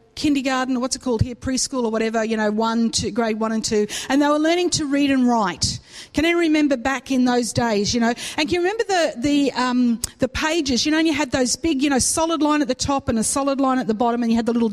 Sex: female